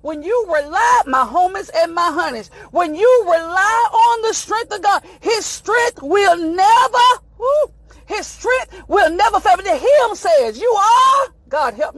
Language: English